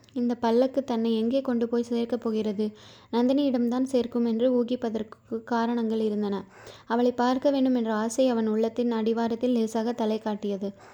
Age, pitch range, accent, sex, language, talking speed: 20-39, 225-255 Hz, native, female, Tamil, 135 wpm